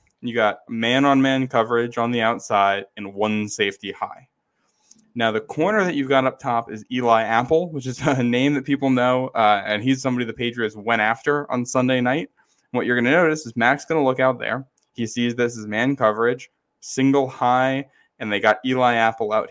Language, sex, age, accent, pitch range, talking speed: English, male, 10-29, American, 110-135 Hz, 205 wpm